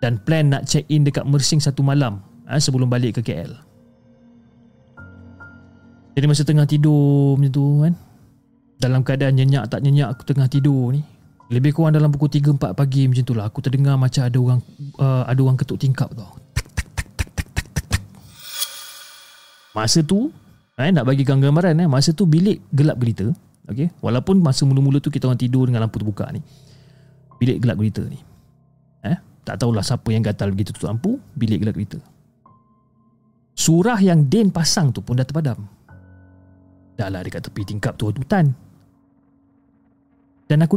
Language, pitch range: Malay, 120-155 Hz